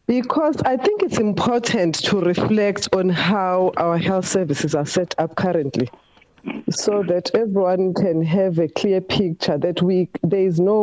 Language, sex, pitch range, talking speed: English, female, 165-210 Hz, 160 wpm